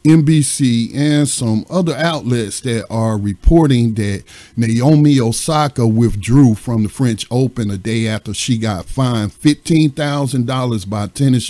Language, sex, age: English, male, 50-69